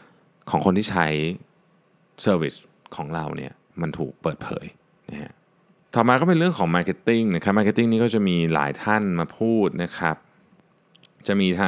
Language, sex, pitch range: Thai, male, 85-120 Hz